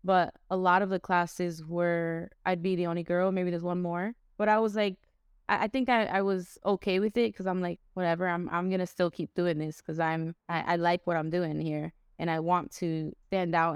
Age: 20-39